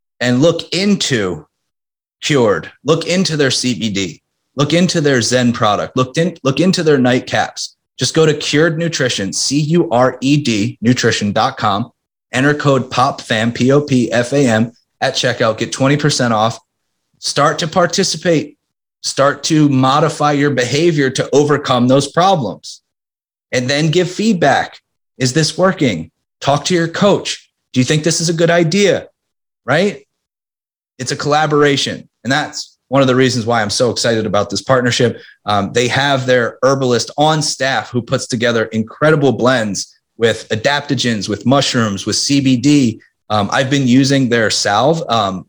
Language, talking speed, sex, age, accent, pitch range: English, 155 wpm, male, 30-49, American, 120-150 Hz